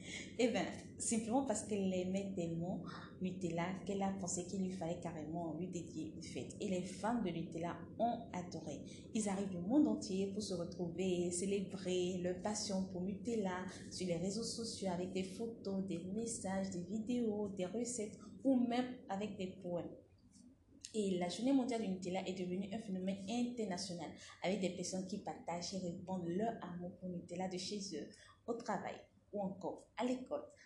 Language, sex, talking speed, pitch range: French, female, 175 wpm, 175-210 Hz